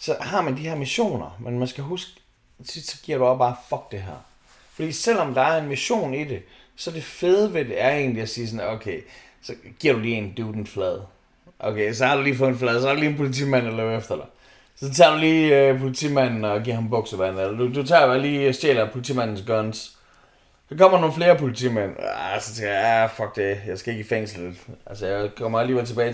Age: 30-49